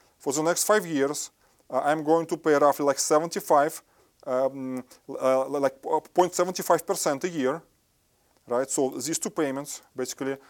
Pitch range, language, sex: 130-155 Hz, English, male